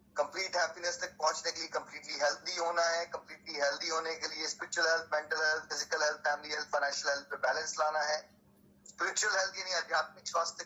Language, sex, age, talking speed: Hindi, male, 30-49, 130 wpm